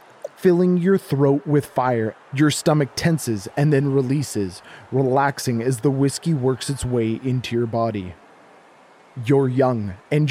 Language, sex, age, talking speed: English, male, 20-39, 140 wpm